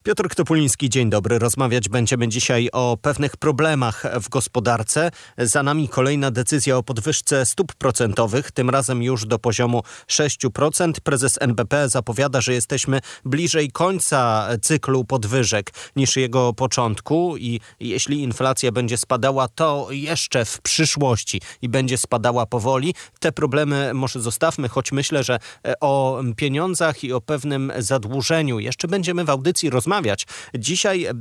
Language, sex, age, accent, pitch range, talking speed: Polish, male, 30-49, native, 125-155 Hz, 135 wpm